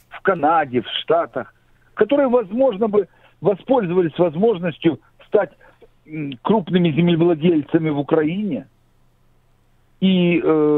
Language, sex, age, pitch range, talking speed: Ukrainian, male, 60-79, 145-210 Hz, 90 wpm